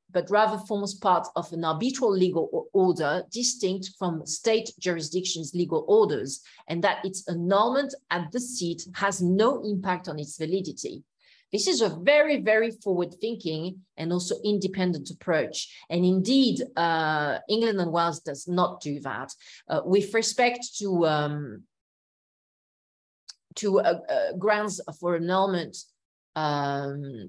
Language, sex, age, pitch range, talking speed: English, female, 40-59, 160-205 Hz, 130 wpm